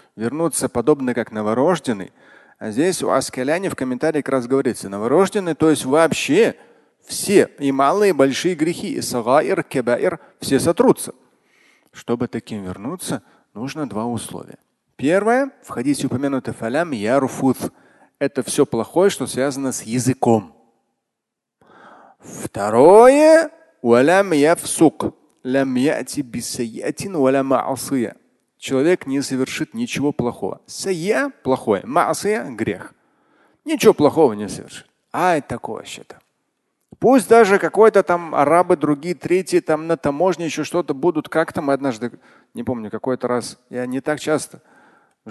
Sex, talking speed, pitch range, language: male, 125 wpm, 125-165 Hz, Russian